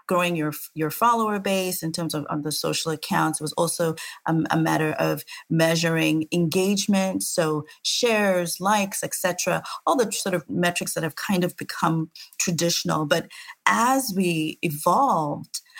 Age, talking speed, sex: 40-59, 150 wpm, female